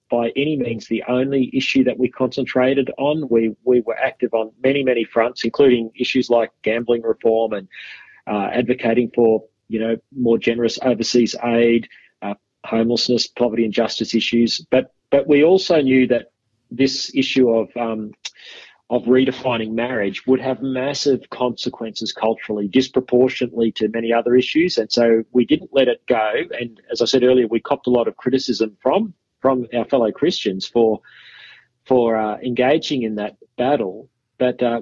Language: English